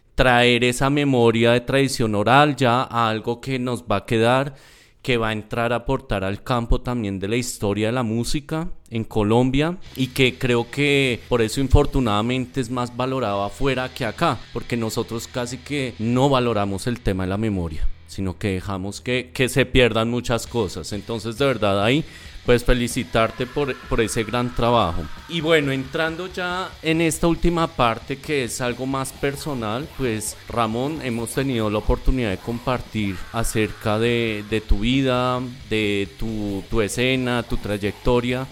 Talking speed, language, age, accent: 165 wpm, Spanish, 30-49, Colombian